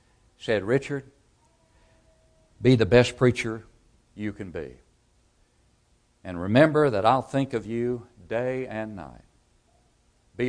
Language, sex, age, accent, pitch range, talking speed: English, male, 60-79, American, 105-145 Hz, 115 wpm